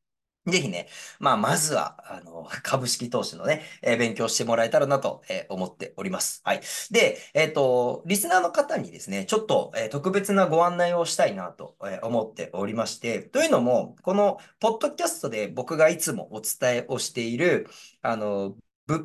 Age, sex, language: 40-59, male, Japanese